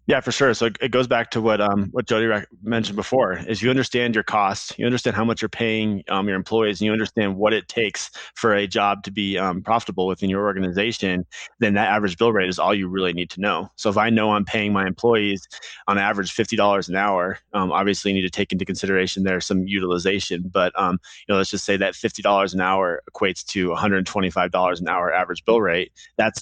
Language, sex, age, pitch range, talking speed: English, male, 20-39, 100-115 Hz, 240 wpm